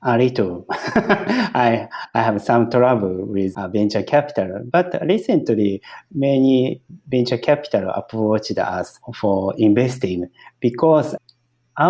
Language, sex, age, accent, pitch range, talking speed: English, male, 50-69, Japanese, 115-160 Hz, 105 wpm